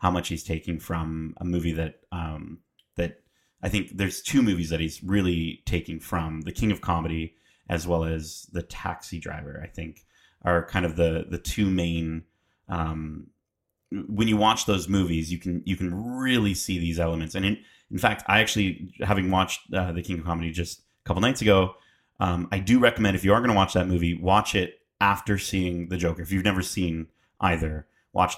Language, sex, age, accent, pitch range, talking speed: English, male, 30-49, American, 85-100 Hz, 200 wpm